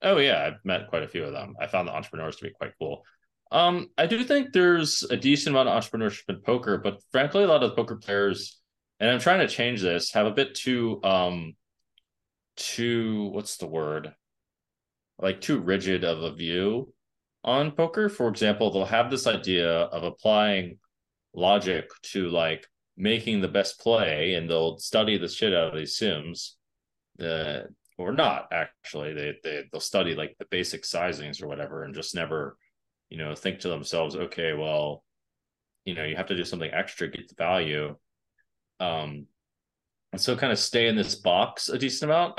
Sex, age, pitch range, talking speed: male, 20-39, 90-125 Hz, 190 wpm